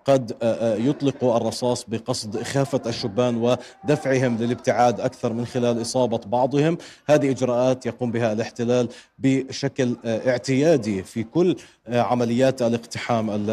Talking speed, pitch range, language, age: 105 wpm, 120-145 Hz, Arabic, 40-59